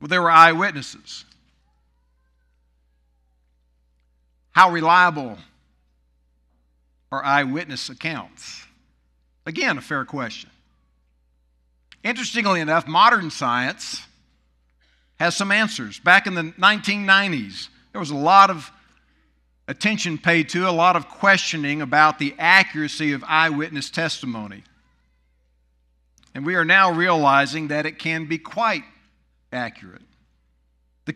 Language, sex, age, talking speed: English, male, 60-79, 105 wpm